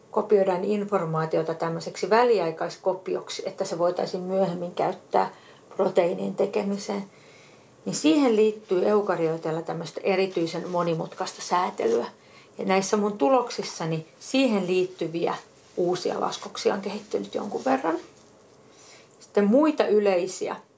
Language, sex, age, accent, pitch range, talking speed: Finnish, female, 40-59, native, 165-225 Hz, 100 wpm